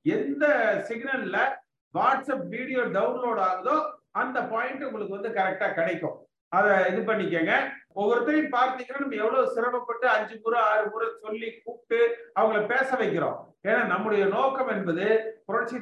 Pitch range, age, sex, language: 200-255 Hz, 50-69, male, Tamil